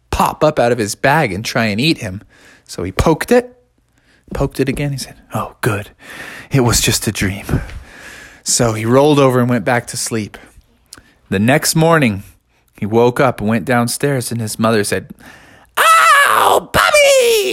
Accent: American